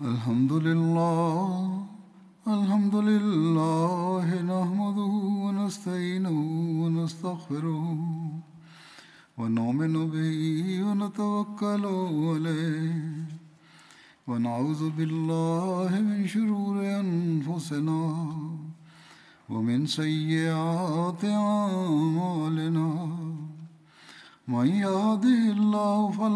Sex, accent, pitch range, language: male, native, 160-200 Hz, Tamil